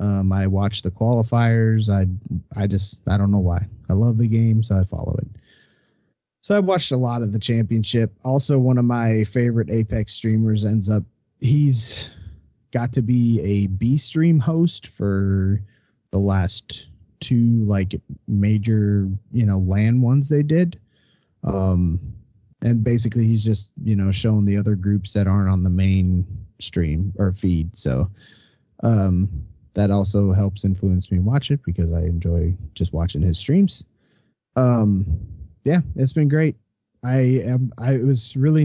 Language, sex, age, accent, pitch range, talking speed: English, male, 30-49, American, 100-130 Hz, 160 wpm